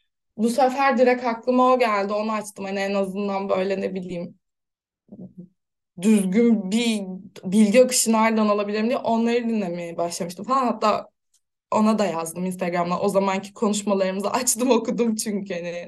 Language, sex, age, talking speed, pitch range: Turkish, female, 20-39, 140 wpm, 190-240 Hz